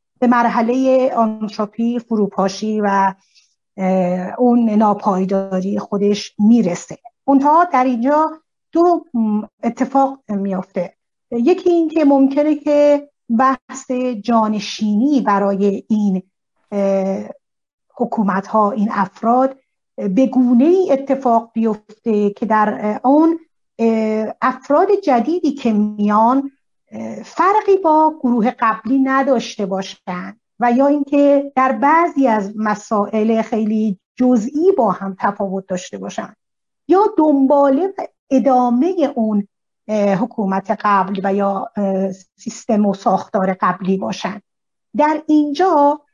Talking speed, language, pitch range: 95 wpm, Persian, 210-275 Hz